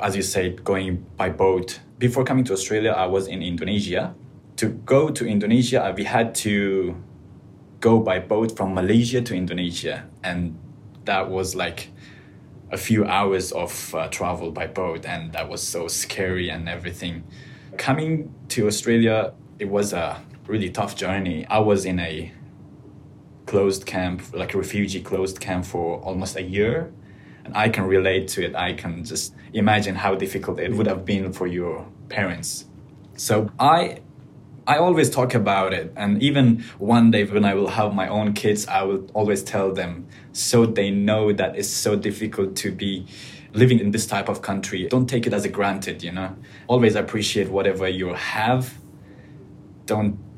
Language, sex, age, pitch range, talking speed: English, male, 20-39, 95-115 Hz, 170 wpm